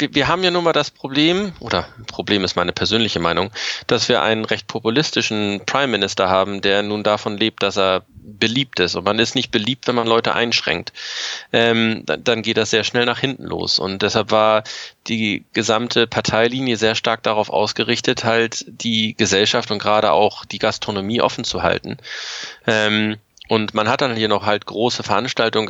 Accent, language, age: German, German, 20-39